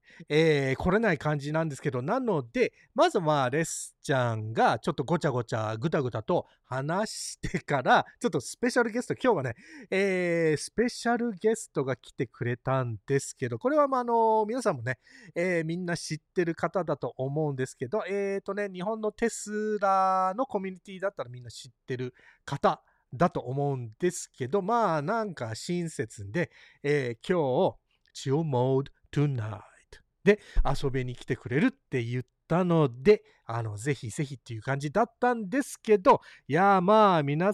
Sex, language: male, Japanese